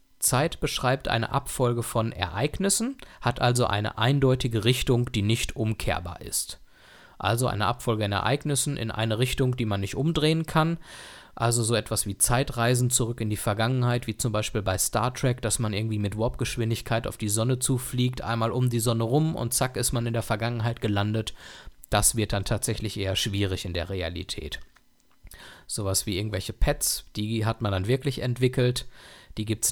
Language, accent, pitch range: German, German, 105-130 Hz